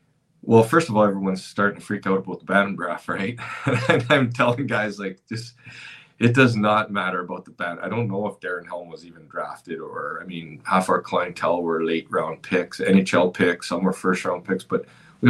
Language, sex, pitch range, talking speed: English, male, 95-115 Hz, 215 wpm